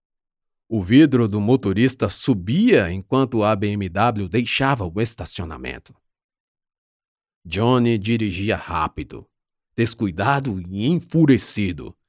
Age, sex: 50-69, male